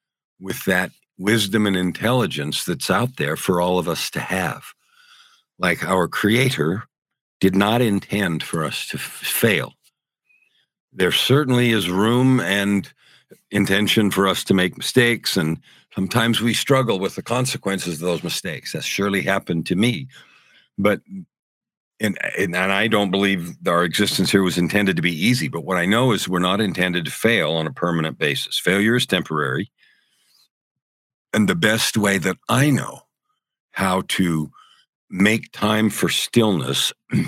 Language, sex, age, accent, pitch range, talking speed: English, male, 50-69, American, 85-110 Hz, 150 wpm